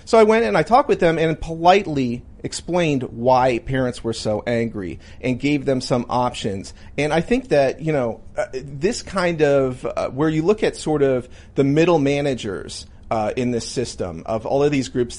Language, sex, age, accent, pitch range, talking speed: English, male, 40-59, American, 120-150 Hz, 200 wpm